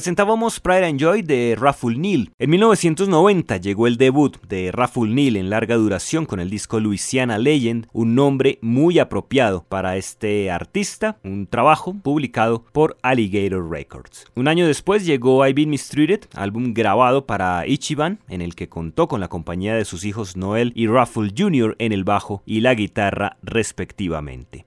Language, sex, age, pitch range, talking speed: Spanish, male, 30-49, 105-150 Hz, 165 wpm